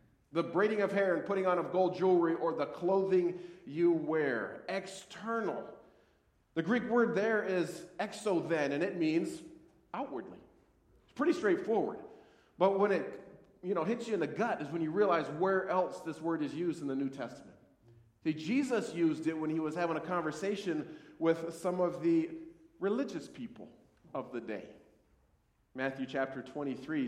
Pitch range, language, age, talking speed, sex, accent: 160-225 Hz, English, 40-59, 170 wpm, male, American